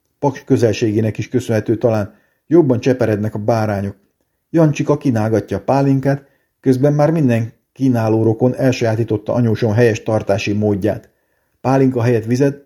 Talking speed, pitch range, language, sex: 125 wpm, 110-130 Hz, Hungarian, male